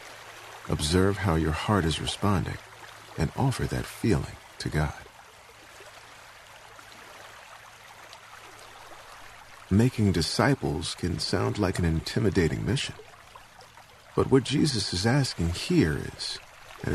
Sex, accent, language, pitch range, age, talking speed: male, American, English, 80-105 Hz, 50-69, 100 wpm